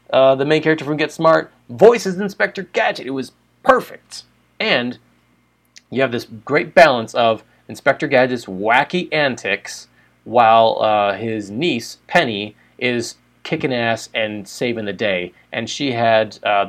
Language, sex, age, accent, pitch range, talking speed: English, male, 30-49, American, 105-145 Hz, 145 wpm